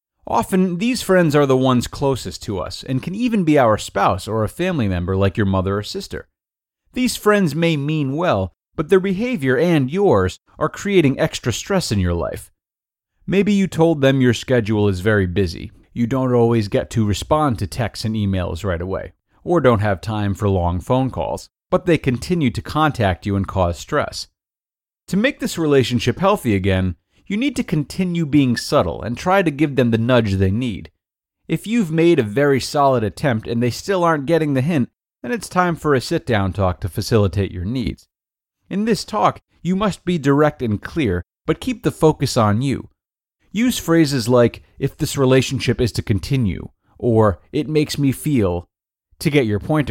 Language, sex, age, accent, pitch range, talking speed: English, male, 30-49, American, 100-160 Hz, 190 wpm